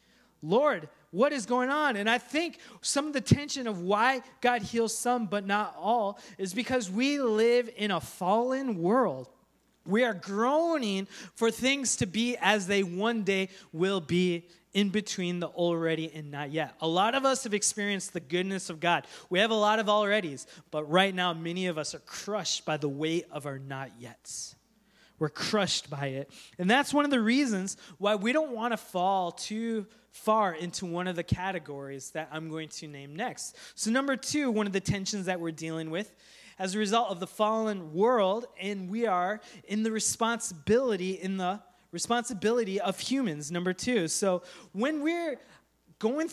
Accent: American